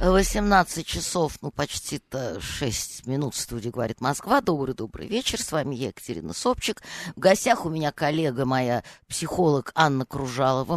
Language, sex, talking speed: Russian, female, 140 wpm